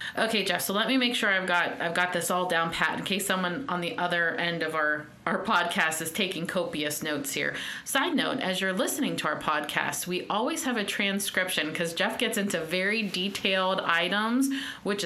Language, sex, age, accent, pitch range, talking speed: English, female, 30-49, American, 175-215 Hz, 205 wpm